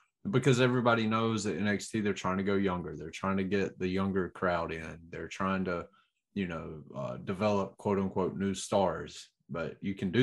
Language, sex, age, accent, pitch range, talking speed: English, male, 20-39, American, 95-115 Hz, 195 wpm